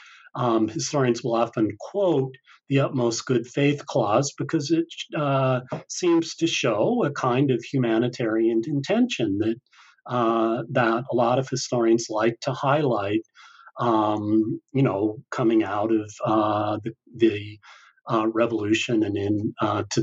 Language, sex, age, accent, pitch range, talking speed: English, male, 40-59, American, 115-150 Hz, 140 wpm